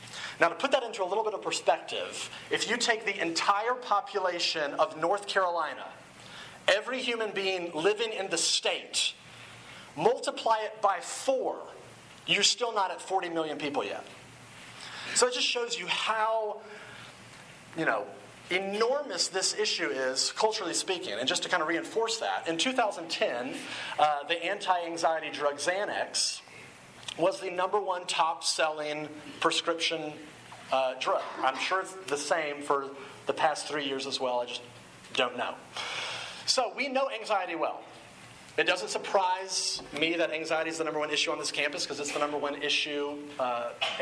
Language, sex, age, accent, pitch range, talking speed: English, male, 40-59, American, 150-225 Hz, 160 wpm